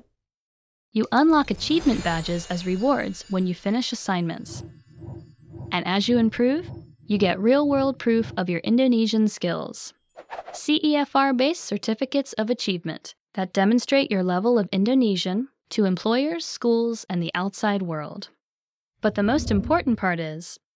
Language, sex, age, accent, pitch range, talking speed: English, female, 10-29, American, 185-265 Hz, 135 wpm